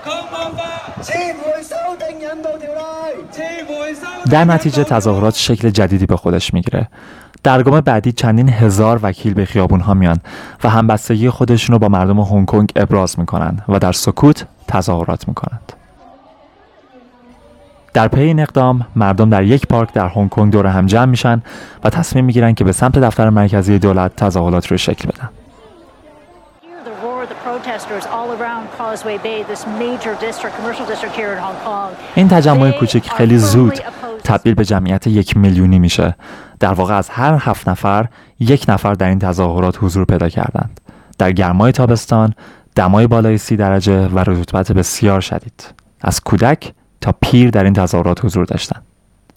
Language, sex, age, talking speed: English, male, 20-39, 145 wpm